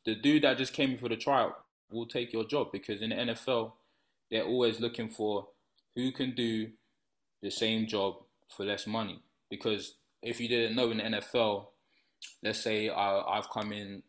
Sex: male